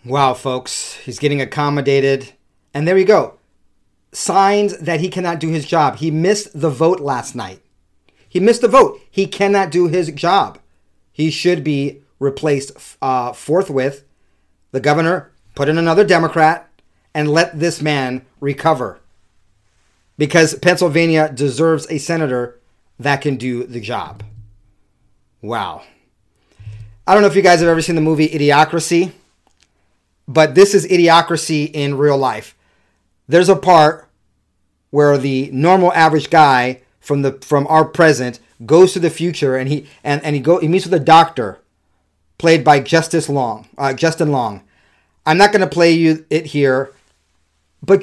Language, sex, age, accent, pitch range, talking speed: English, male, 40-59, American, 125-165 Hz, 155 wpm